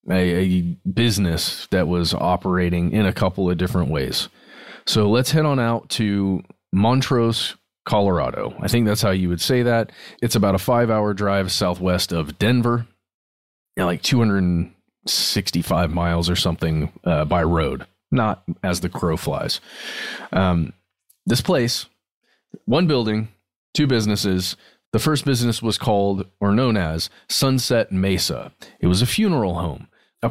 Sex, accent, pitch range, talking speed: male, American, 90-120 Hz, 145 wpm